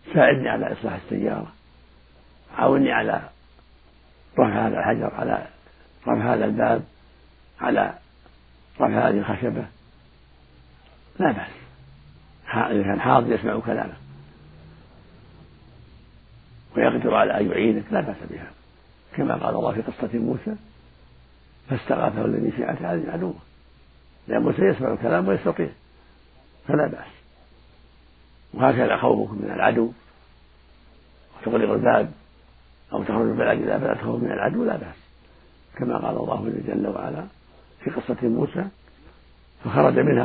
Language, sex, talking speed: Arabic, male, 110 wpm